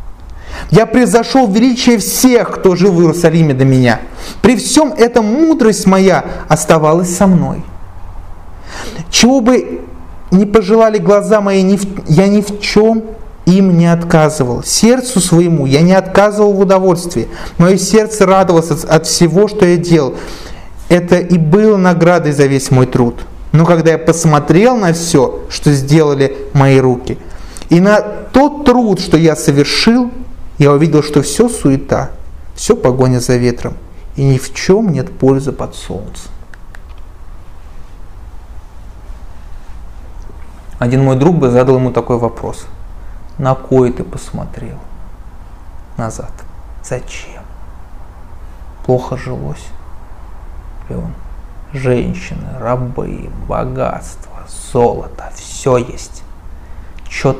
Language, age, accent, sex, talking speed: Russian, 30-49, native, male, 115 wpm